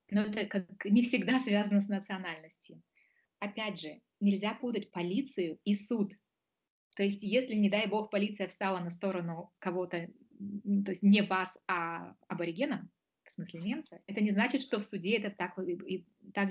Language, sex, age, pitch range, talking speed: Russian, female, 20-39, 195-225 Hz, 155 wpm